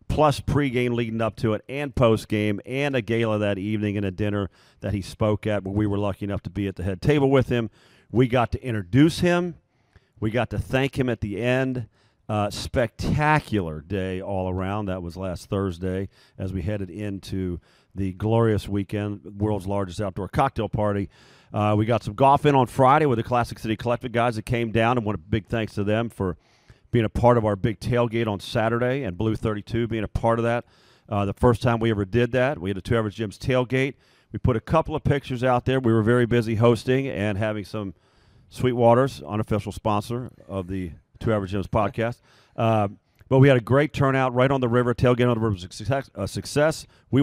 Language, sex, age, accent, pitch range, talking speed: English, male, 40-59, American, 105-125 Hz, 210 wpm